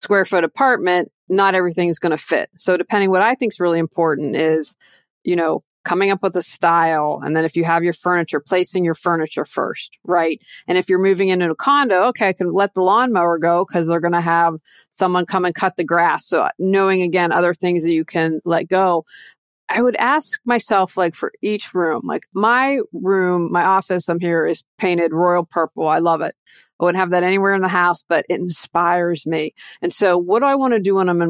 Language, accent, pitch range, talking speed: English, American, 165-195 Hz, 225 wpm